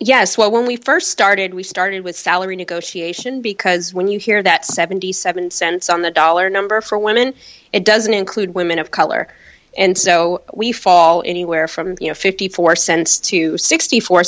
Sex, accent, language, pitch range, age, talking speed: female, American, English, 175-215 Hz, 20-39, 175 wpm